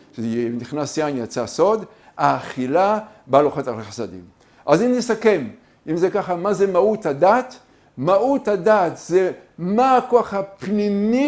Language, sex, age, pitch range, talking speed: English, male, 50-69, 150-225 Hz, 135 wpm